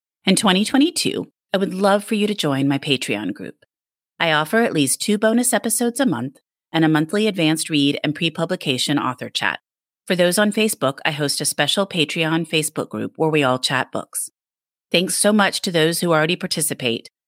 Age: 30-49